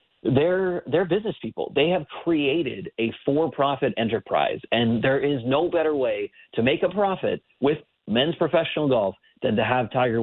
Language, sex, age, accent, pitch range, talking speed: English, male, 40-59, American, 110-140 Hz, 165 wpm